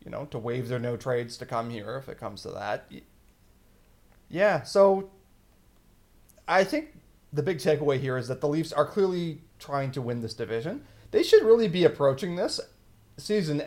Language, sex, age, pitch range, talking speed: English, male, 30-49, 115-155 Hz, 180 wpm